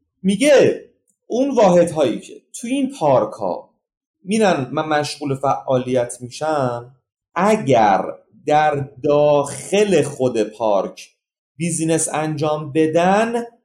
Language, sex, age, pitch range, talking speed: Persian, male, 30-49, 145-200 Hz, 95 wpm